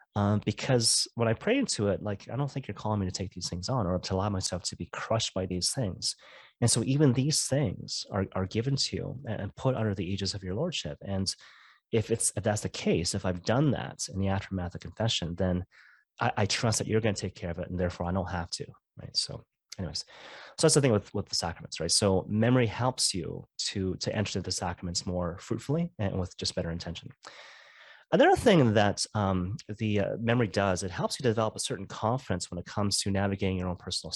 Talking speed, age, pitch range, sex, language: 230 wpm, 30-49, 95-125 Hz, male, English